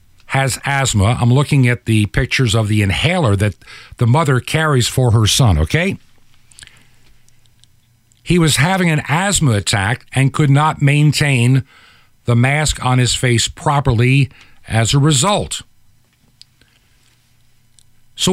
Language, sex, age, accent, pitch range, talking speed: English, male, 50-69, American, 120-195 Hz, 125 wpm